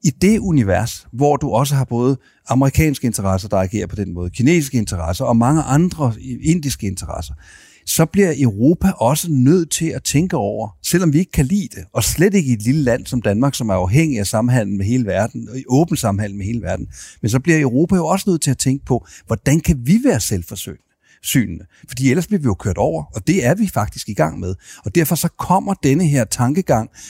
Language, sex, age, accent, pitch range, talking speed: Danish, male, 60-79, native, 115-160 Hz, 220 wpm